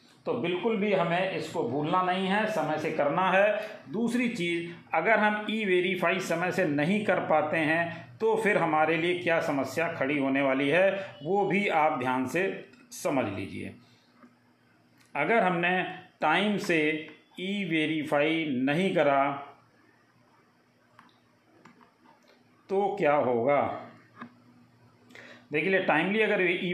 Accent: native